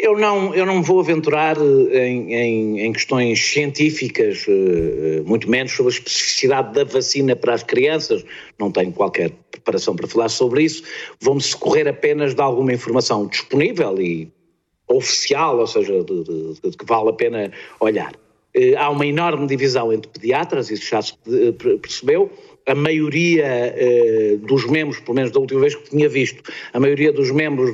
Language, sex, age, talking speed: Portuguese, male, 50-69, 160 wpm